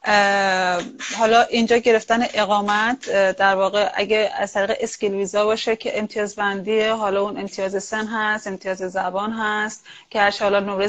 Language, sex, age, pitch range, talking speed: Persian, female, 30-49, 205-245 Hz, 150 wpm